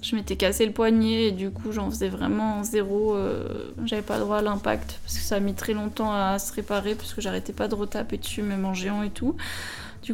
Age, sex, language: 20-39, female, French